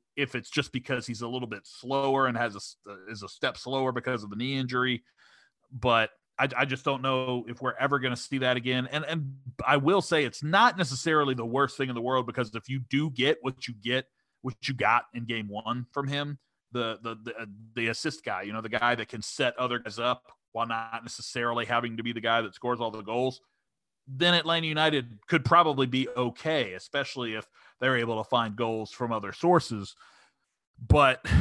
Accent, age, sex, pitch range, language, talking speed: American, 30-49, male, 115-135 Hz, English, 215 wpm